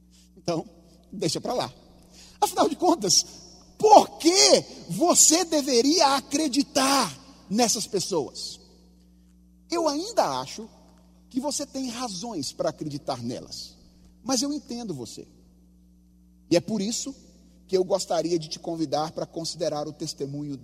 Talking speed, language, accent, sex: 120 wpm, Portuguese, Brazilian, male